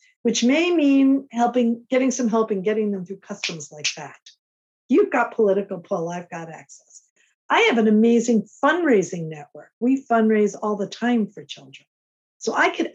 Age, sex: 50-69, female